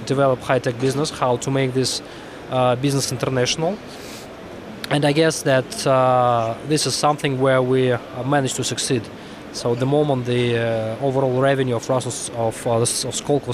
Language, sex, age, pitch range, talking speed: English, male, 20-39, 120-135 Hz, 165 wpm